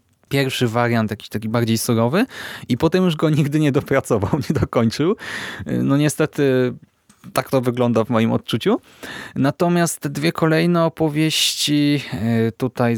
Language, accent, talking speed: Polish, native, 135 wpm